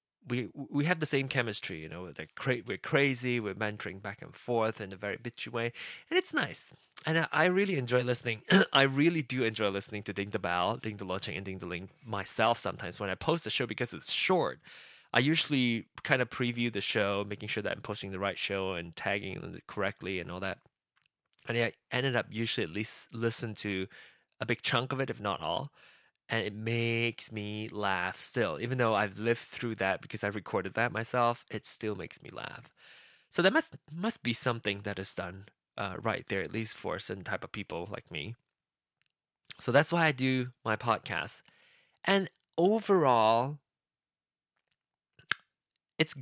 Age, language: 20-39, English